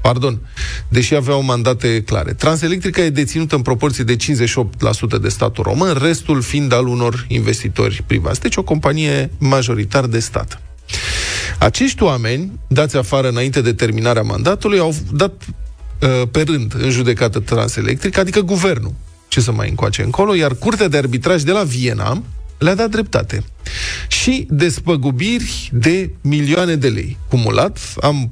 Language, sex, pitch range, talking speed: Romanian, male, 115-150 Hz, 145 wpm